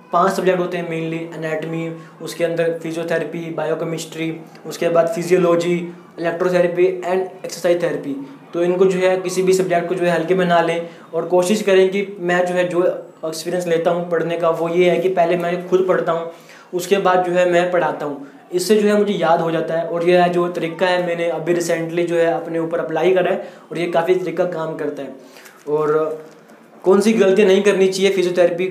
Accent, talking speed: native, 205 wpm